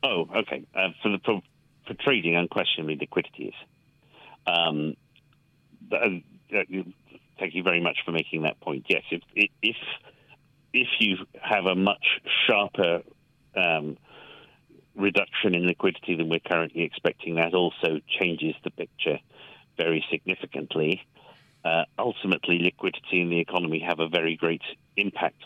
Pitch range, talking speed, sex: 80-100 Hz, 135 wpm, male